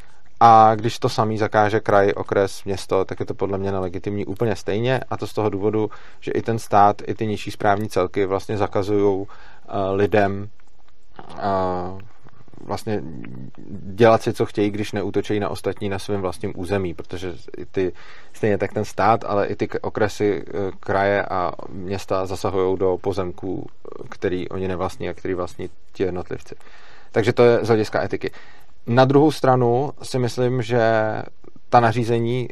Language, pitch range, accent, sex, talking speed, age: Czech, 100-115 Hz, native, male, 160 wpm, 30-49